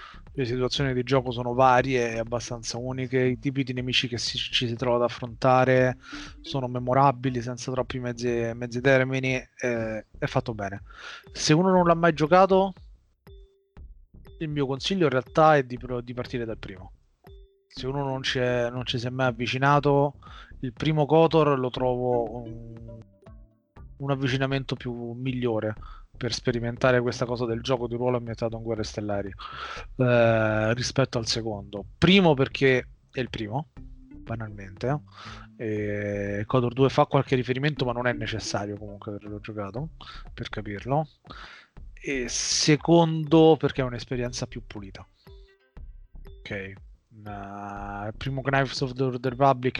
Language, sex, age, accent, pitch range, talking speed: Italian, male, 20-39, native, 115-135 Hz, 145 wpm